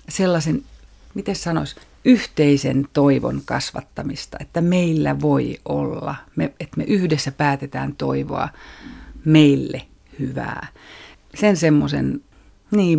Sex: female